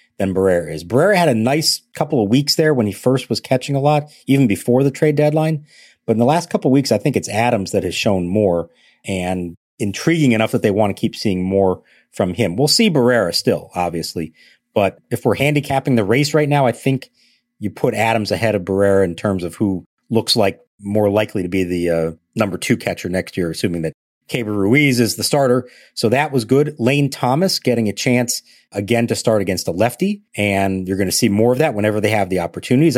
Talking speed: 225 wpm